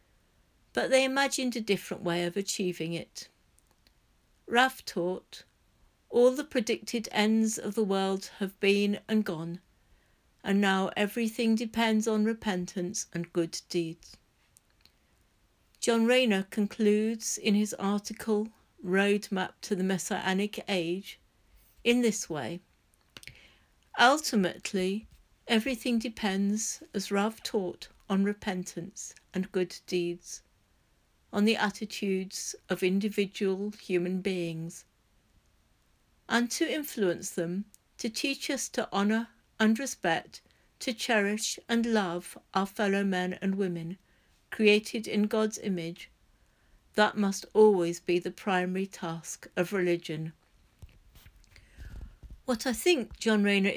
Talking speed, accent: 115 wpm, British